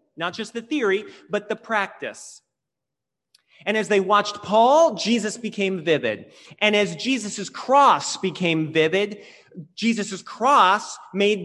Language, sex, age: English, male, 30-49